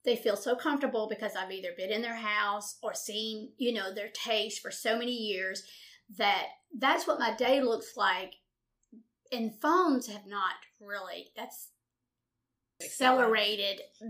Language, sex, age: English, female, 40-59